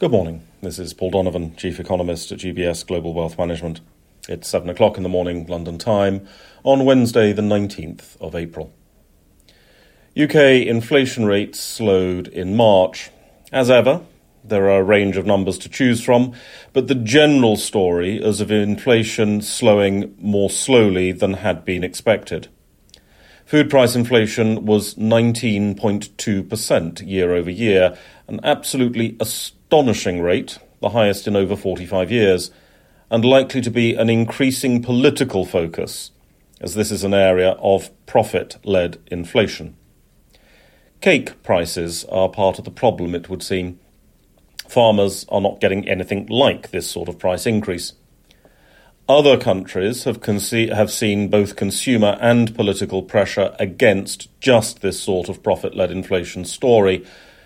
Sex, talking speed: male, 140 wpm